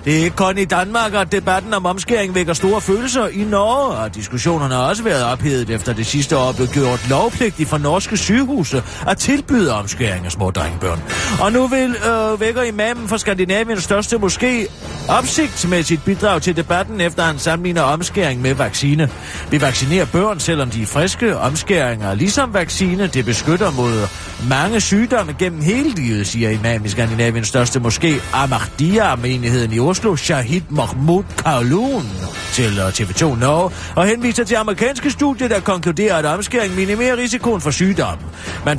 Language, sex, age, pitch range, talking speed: Danish, male, 40-59, 125-205 Hz, 165 wpm